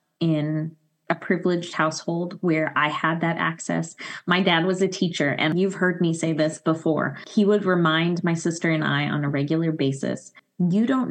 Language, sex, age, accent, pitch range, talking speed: English, female, 20-39, American, 155-180 Hz, 185 wpm